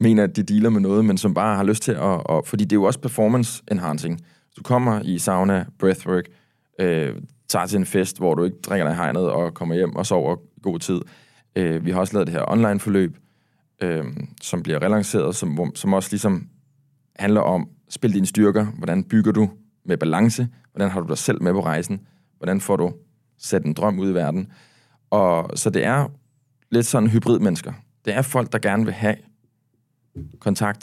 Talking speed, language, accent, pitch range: 195 wpm, English, Danish, 90-115 Hz